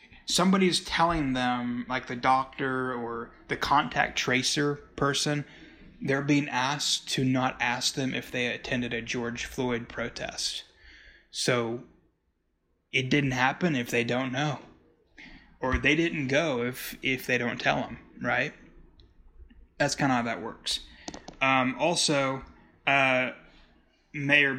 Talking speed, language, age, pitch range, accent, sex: 130 wpm, English, 20-39, 125-150 Hz, American, male